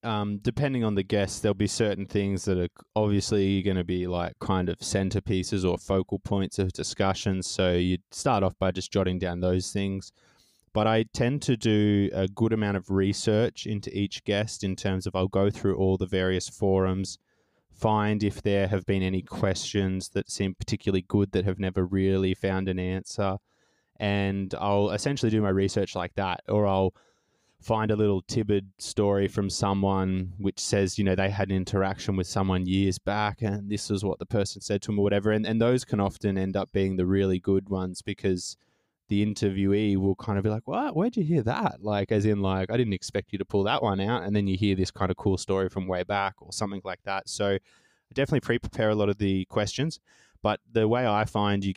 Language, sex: English, male